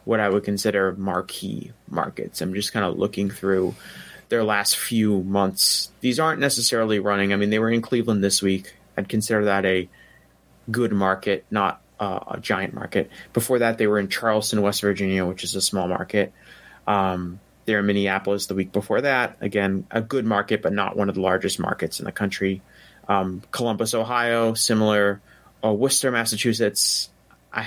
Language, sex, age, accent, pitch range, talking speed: English, male, 30-49, American, 95-115 Hz, 175 wpm